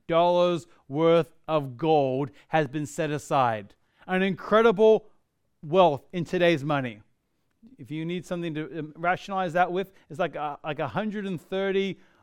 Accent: American